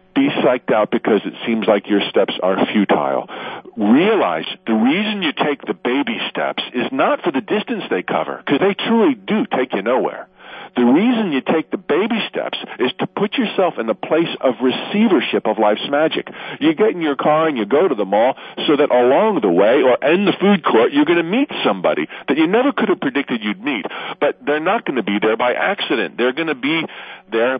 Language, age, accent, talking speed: English, 50-69, American, 215 wpm